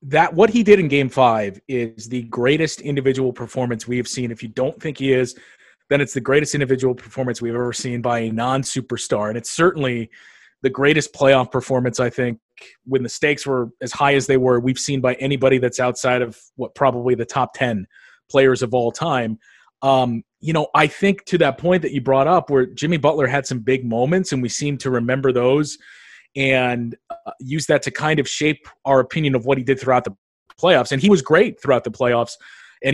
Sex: male